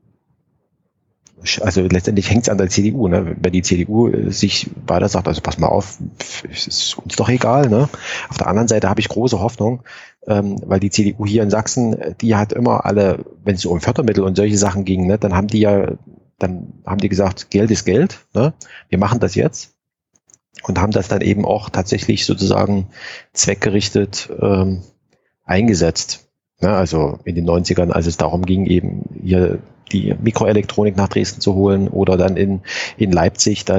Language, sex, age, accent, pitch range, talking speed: German, male, 40-59, German, 95-105 Hz, 180 wpm